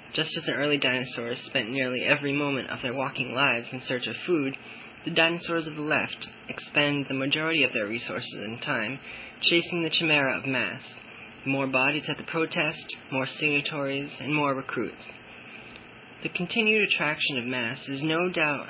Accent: American